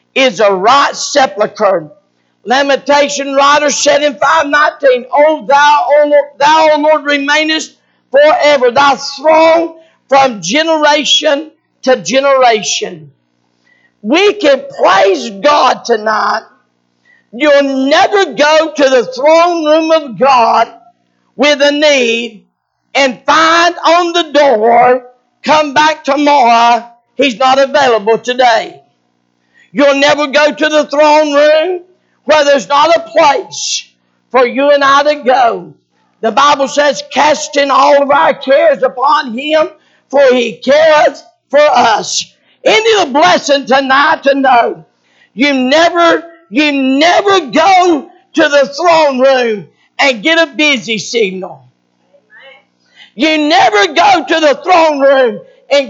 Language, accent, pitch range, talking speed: English, American, 255-310 Hz, 120 wpm